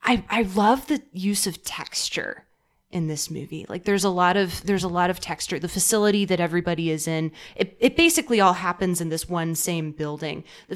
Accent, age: American, 20-39